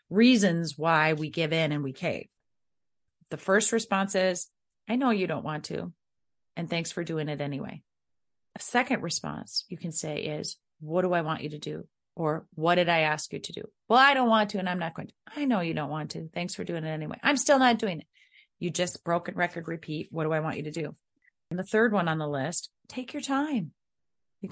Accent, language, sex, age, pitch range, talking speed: American, English, female, 30-49, 160-210 Hz, 230 wpm